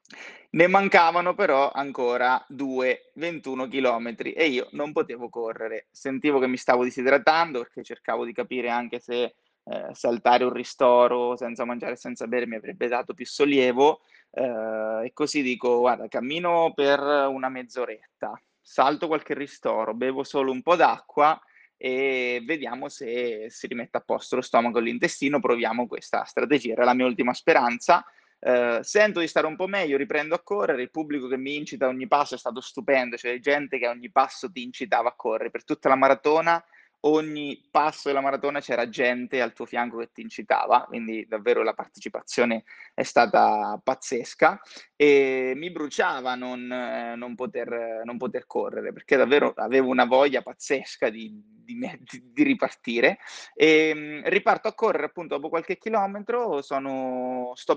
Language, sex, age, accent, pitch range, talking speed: Italian, male, 20-39, native, 125-155 Hz, 155 wpm